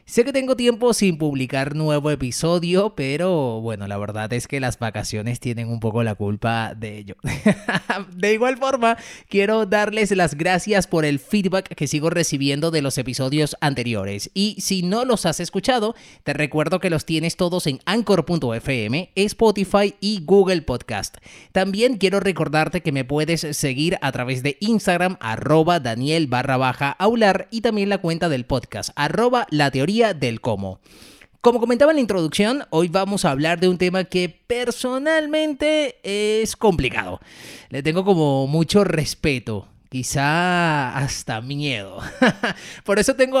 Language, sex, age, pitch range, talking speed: Spanish, male, 30-49, 140-210 Hz, 155 wpm